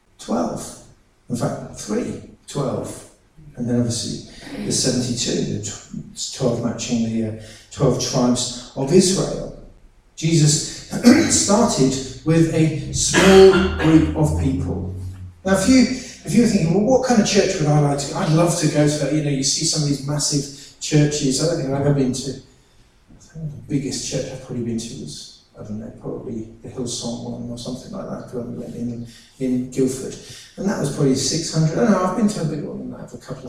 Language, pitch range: English, 130-185 Hz